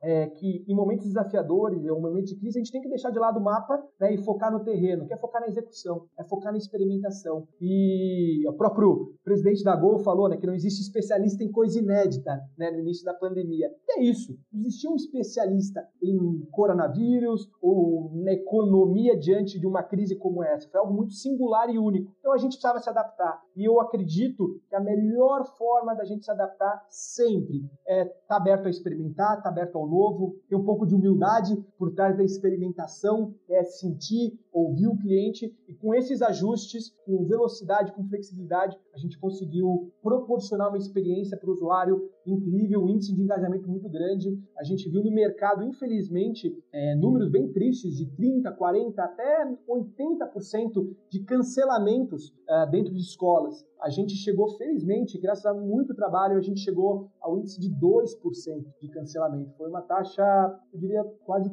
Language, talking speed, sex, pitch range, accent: Portuguese, 180 wpm, male, 185-220 Hz, Brazilian